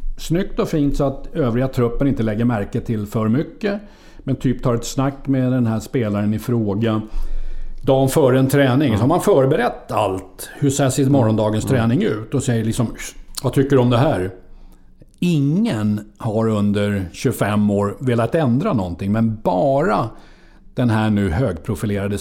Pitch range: 105-140 Hz